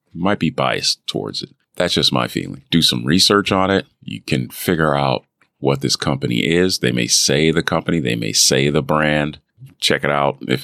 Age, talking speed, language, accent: 40-59, 205 wpm, English, American